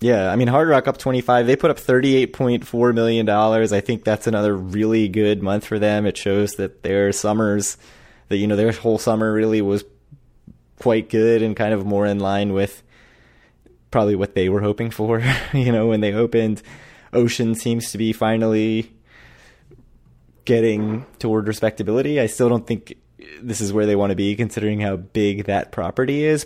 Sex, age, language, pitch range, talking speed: male, 20-39, English, 100-115 Hz, 180 wpm